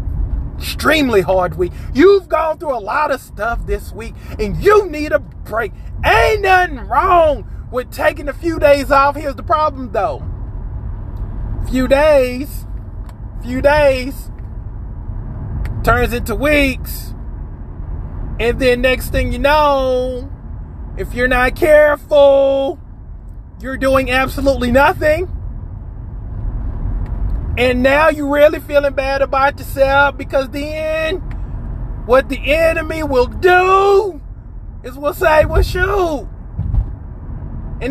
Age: 30-49